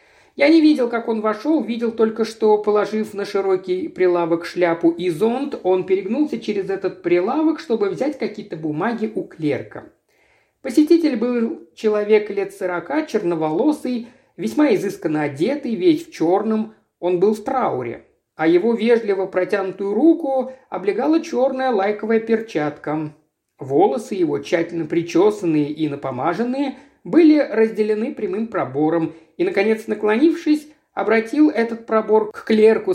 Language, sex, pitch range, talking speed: Russian, male, 175-265 Hz, 125 wpm